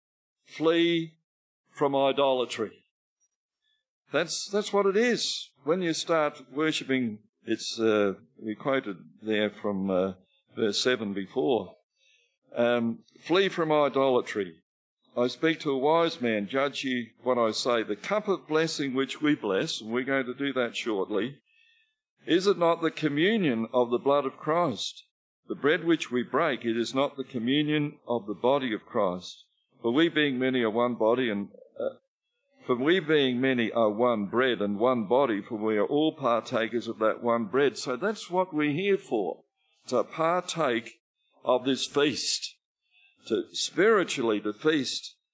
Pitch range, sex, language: 115-160 Hz, male, English